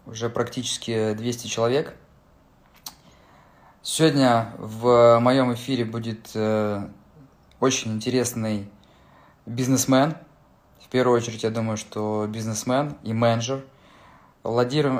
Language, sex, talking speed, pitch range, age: Russian, male, 90 wpm, 110-130 Hz, 20-39